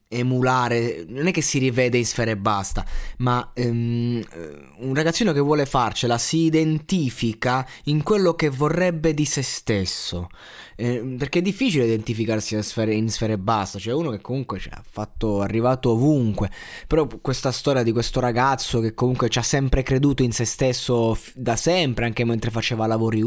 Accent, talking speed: native, 175 wpm